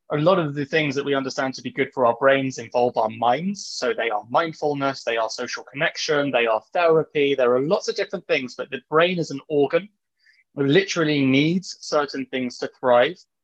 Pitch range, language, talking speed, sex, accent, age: 125-150 Hz, English, 210 wpm, male, British, 20-39